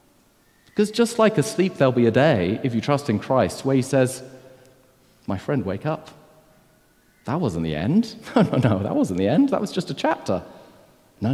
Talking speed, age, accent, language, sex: 195 wpm, 40-59, British, English, male